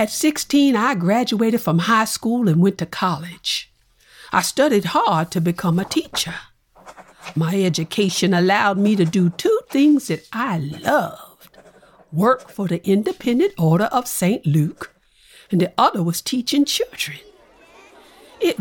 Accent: American